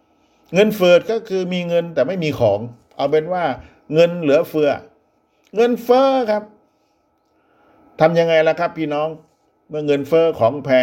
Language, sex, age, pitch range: Thai, male, 50-69, 130-210 Hz